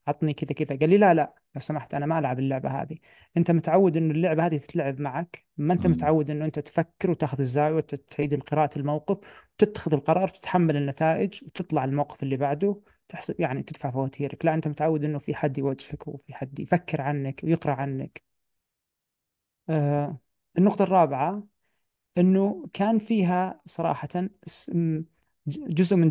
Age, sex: 30-49, male